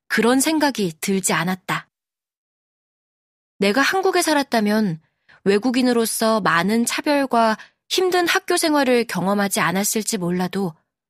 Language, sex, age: Korean, female, 20-39